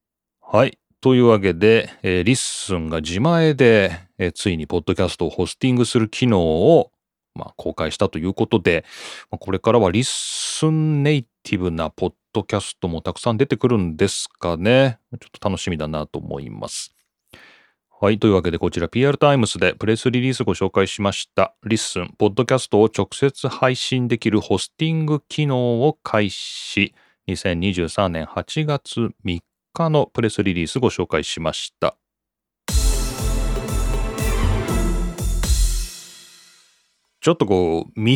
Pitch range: 95-130 Hz